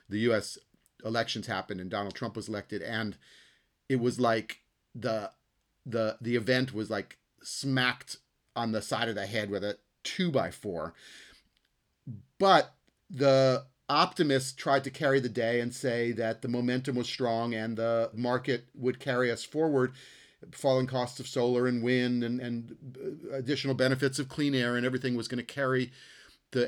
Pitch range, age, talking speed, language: 110-130 Hz, 40-59, 165 wpm, English